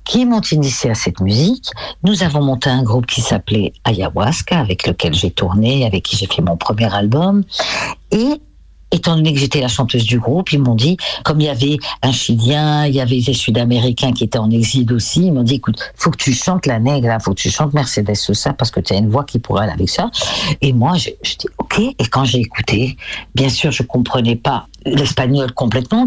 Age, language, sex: 50-69, French, female